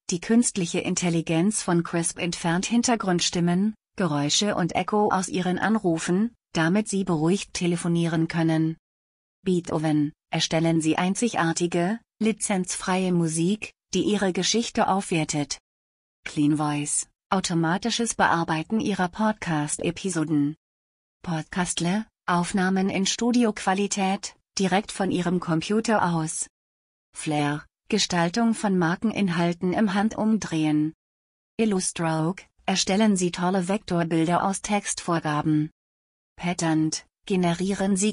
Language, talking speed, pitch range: German, 95 wpm, 160-195 Hz